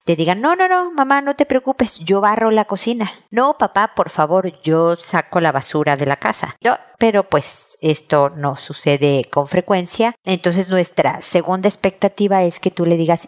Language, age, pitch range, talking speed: Spanish, 50-69, 160-210 Hz, 180 wpm